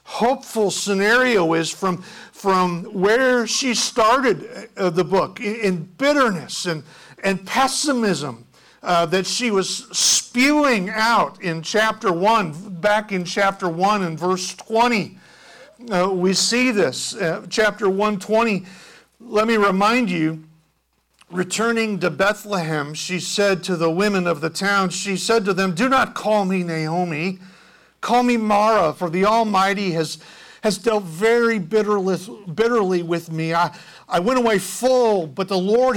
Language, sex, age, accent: English, male, 50-69, American